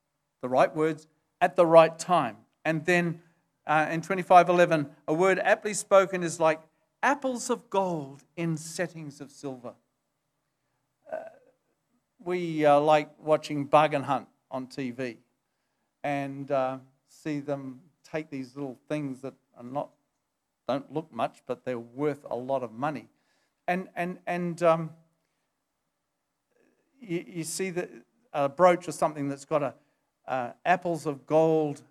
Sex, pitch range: male, 140-170 Hz